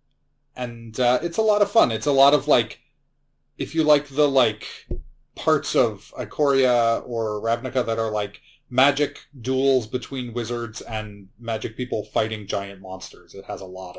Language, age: English, 30-49